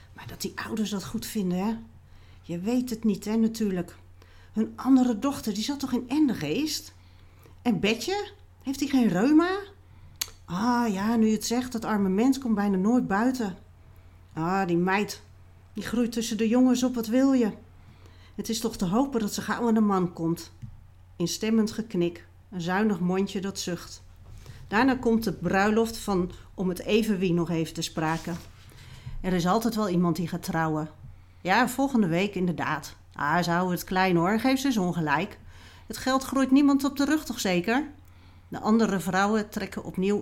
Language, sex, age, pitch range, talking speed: Dutch, female, 40-59, 155-225 Hz, 175 wpm